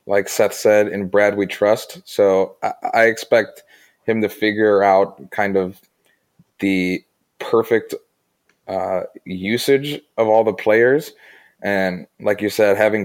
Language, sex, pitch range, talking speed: English, male, 100-110 Hz, 135 wpm